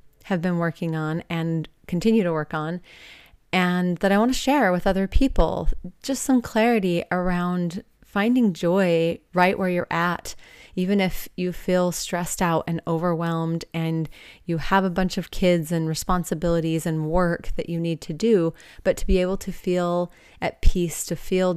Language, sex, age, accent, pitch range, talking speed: English, female, 30-49, American, 165-190 Hz, 170 wpm